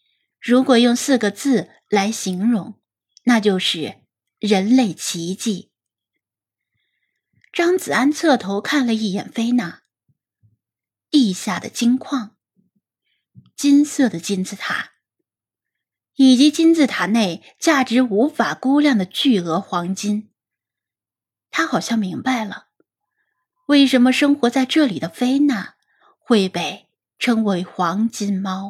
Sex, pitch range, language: female, 195-270 Hz, Chinese